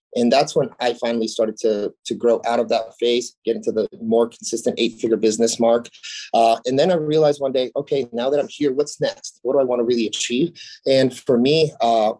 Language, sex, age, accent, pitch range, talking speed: English, male, 30-49, American, 115-145 Hz, 230 wpm